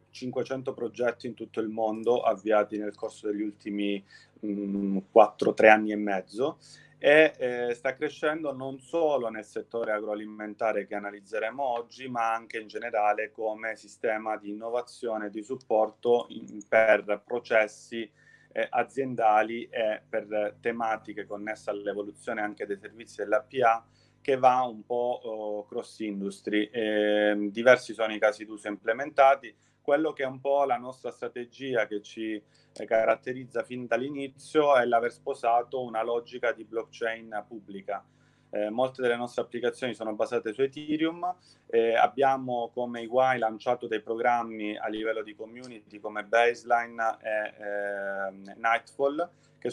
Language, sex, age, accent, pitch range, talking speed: Italian, male, 30-49, native, 105-125 Hz, 135 wpm